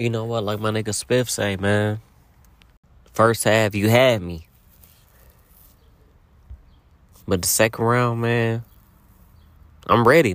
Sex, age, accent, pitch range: male, 20-39, American, 75-110 Hz